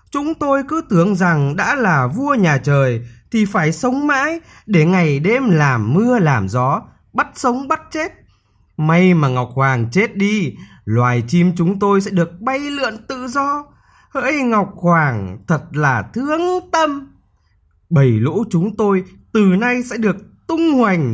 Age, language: 20-39, Vietnamese